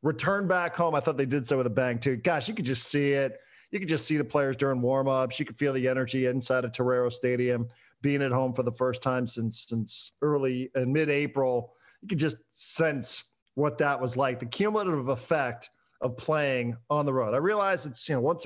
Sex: male